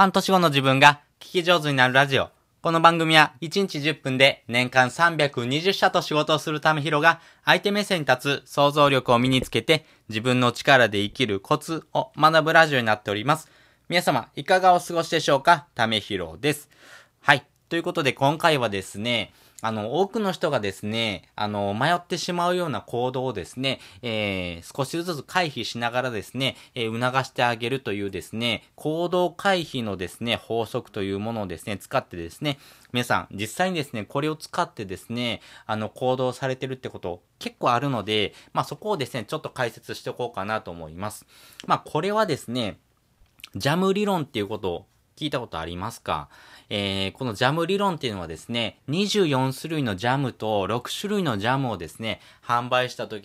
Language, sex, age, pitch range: Japanese, male, 20-39, 115-160 Hz